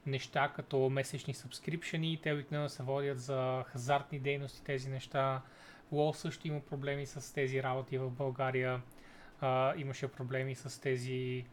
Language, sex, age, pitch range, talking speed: Bulgarian, male, 30-49, 130-160 Hz, 140 wpm